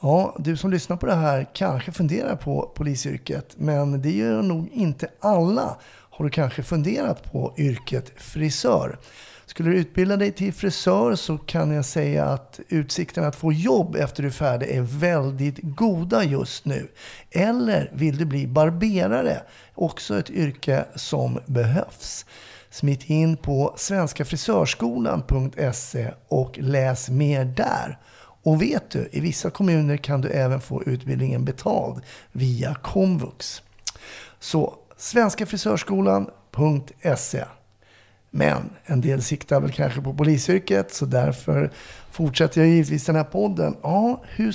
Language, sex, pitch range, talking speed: Swedish, male, 135-170 Hz, 135 wpm